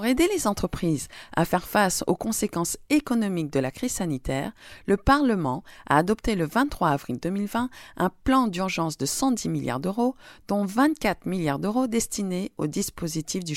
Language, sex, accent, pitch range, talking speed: French, female, French, 155-225 Hz, 165 wpm